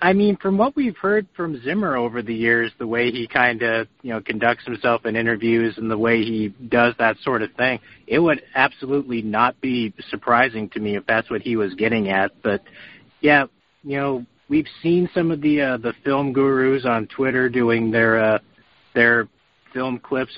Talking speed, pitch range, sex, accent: 195 wpm, 110-130 Hz, male, American